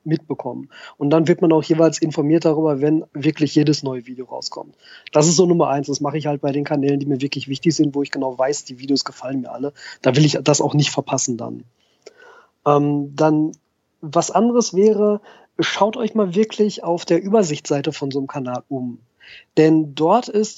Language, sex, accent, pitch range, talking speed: German, male, German, 145-190 Hz, 200 wpm